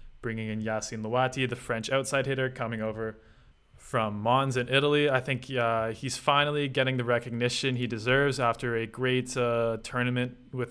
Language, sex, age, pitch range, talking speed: English, male, 20-39, 115-130 Hz, 170 wpm